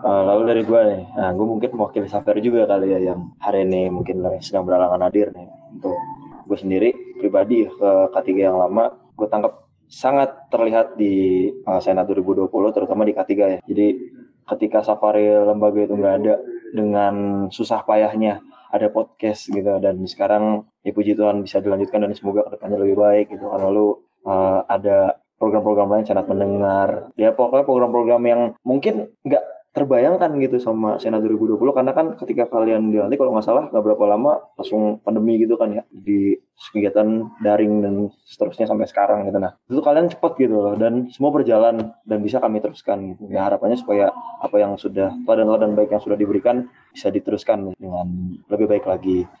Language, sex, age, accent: Indonesian, male, 20-39, native